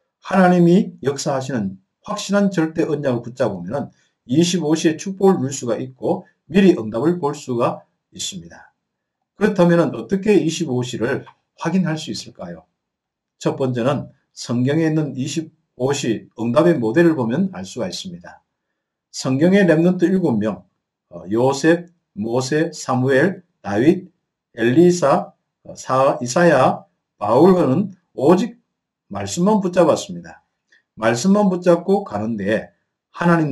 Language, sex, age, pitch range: Korean, male, 50-69, 130-180 Hz